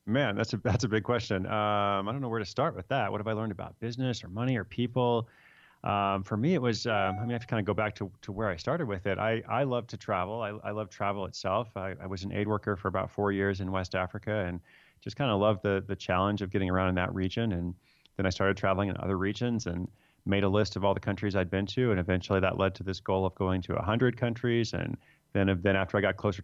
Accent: American